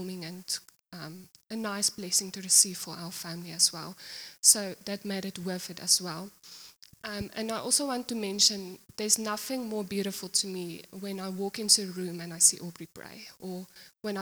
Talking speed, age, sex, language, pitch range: 195 wpm, 20-39, female, English, 175-205 Hz